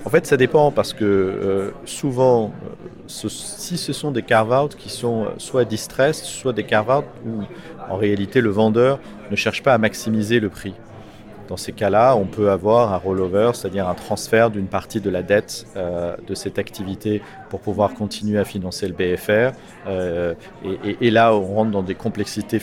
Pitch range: 100-115 Hz